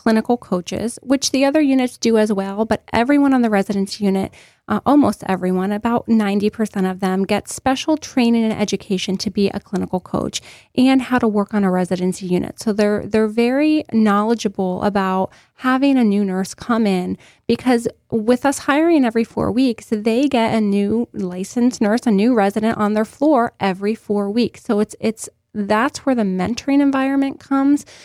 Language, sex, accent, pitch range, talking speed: English, female, American, 200-250 Hz, 180 wpm